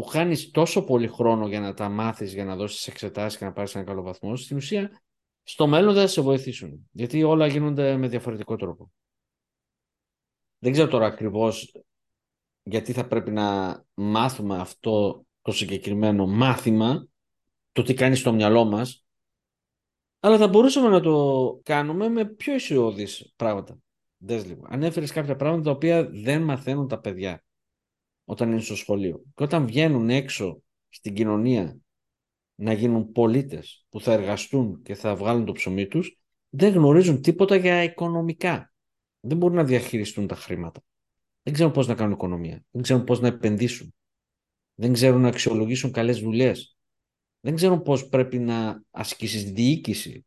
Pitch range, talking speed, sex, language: 105-155 Hz, 155 wpm, male, Greek